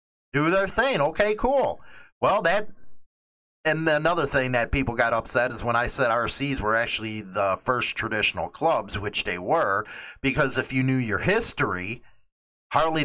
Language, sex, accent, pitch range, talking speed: English, male, American, 130-175 Hz, 155 wpm